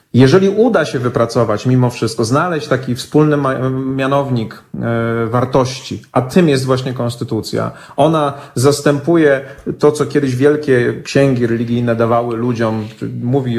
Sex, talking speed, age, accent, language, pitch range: male, 120 wpm, 30-49, native, Polish, 120-145 Hz